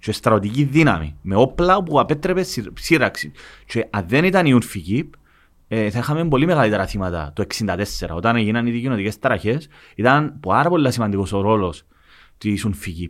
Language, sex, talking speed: Greek, male, 135 wpm